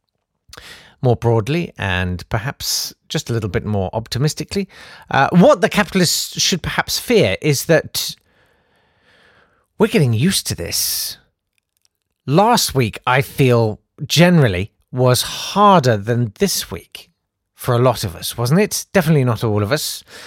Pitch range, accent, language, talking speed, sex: 115-175 Hz, British, English, 135 wpm, male